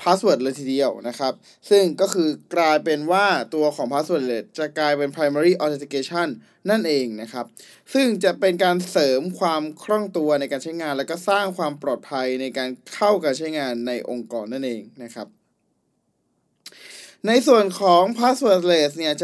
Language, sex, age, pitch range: Thai, male, 20-39, 140-185 Hz